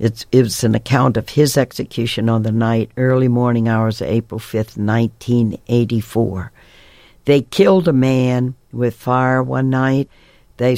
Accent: American